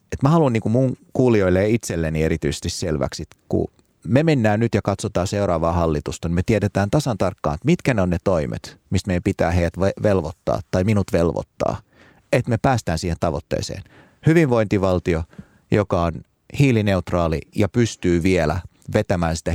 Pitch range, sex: 85-115 Hz, male